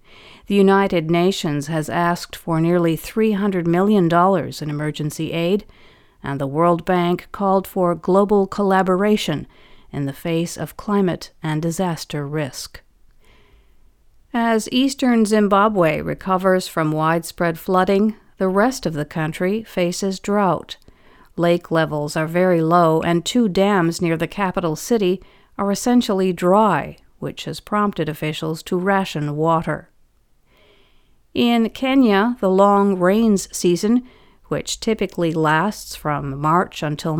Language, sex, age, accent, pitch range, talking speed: English, female, 50-69, American, 165-205 Hz, 125 wpm